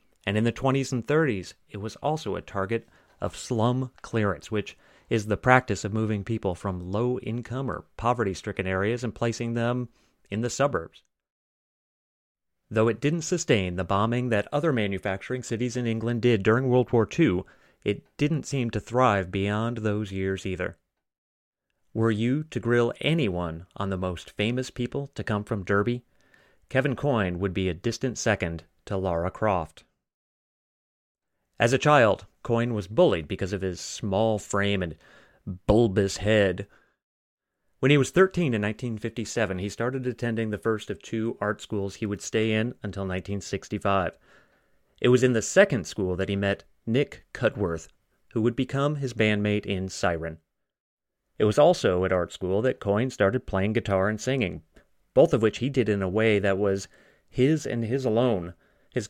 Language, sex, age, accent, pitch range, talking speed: English, male, 30-49, American, 100-120 Hz, 165 wpm